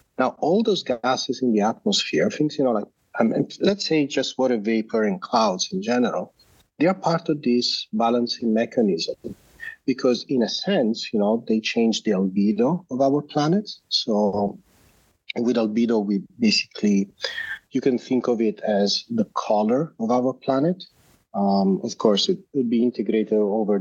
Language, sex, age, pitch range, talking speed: English, male, 40-59, 105-170 Hz, 165 wpm